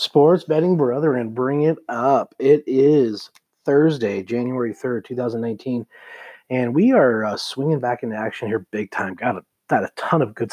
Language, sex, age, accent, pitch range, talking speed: English, male, 30-49, American, 115-135 Hz, 175 wpm